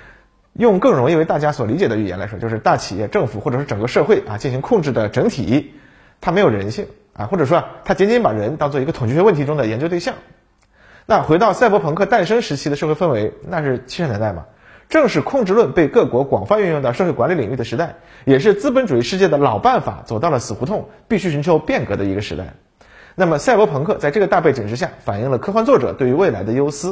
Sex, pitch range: male, 110-175 Hz